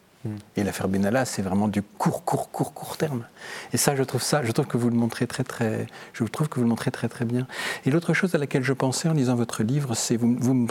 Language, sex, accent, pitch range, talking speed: French, male, French, 115-145 Hz, 270 wpm